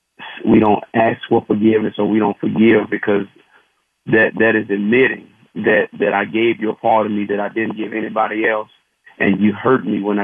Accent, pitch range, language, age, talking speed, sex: American, 105-125 Hz, English, 40-59, 200 wpm, male